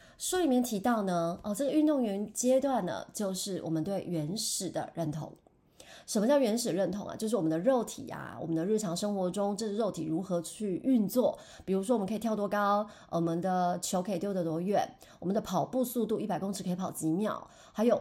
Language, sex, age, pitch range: Chinese, female, 30-49, 175-235 Hz